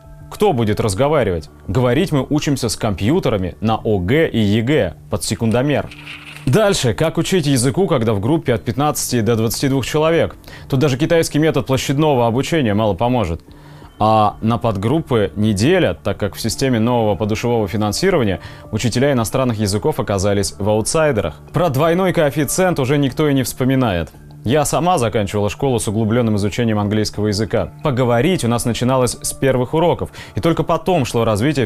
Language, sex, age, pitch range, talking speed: Russian, male, 30-49, 110-145 Hz, 150 wpm